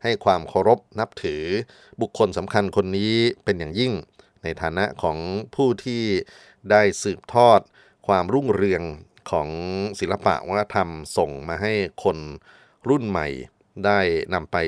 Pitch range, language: 85-115 Hz, Thai